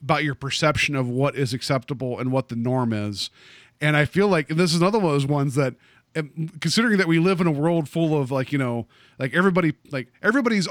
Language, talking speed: English, 225 wpm